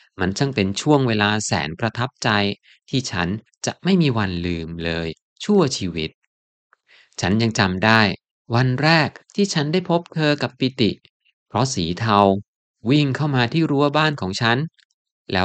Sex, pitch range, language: male, 100-140 Hz, Thai